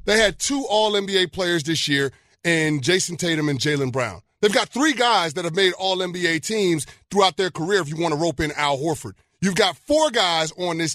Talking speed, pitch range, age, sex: 225 wpm, 155-240 Hz, 30-49, male